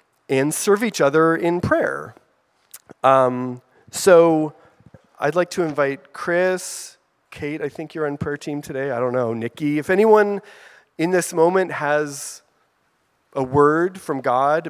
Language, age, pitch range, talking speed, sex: English, 30-49, 135-170 Hz, 145 wpm, male